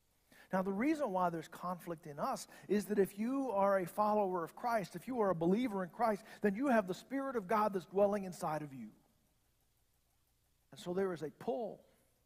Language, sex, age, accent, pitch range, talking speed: English, male, 50-69, American, 180-225 Hz, 205 wpm